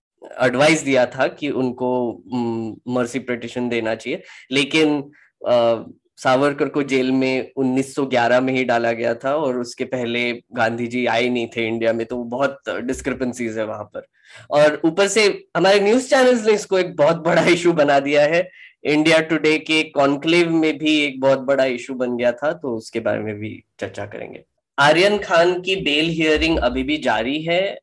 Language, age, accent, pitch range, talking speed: Hindi, 10-29, native, 125-150 Hz, 170 wpm